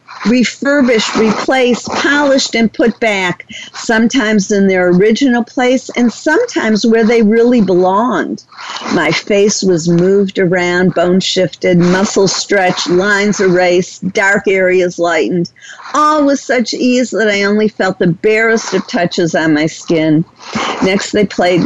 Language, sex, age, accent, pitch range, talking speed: English, female, 50-69, American, 175-225 Hz, 135 wpm